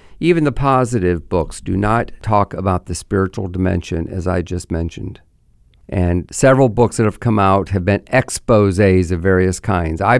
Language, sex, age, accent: English, male, 50-69, American